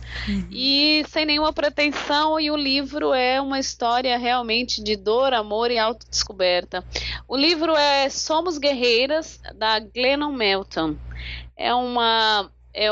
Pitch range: 215-265 Hz